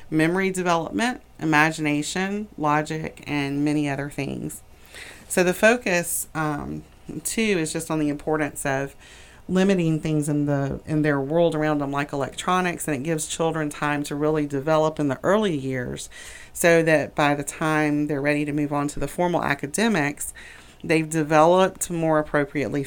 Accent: American